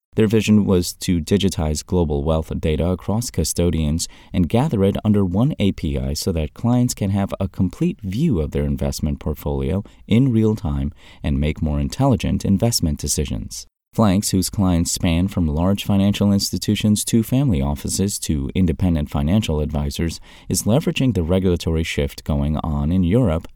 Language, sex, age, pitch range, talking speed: English, male, 30-49, 80-105 Hz, 155 wpm